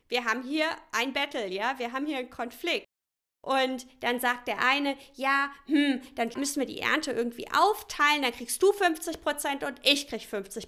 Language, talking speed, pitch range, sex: German, 190 wpm, 235-305 Hz, female